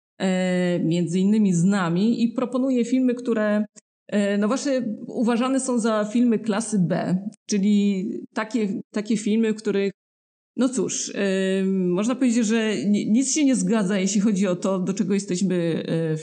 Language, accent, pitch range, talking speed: Polish, native, 185-235 Hz, 140 wpm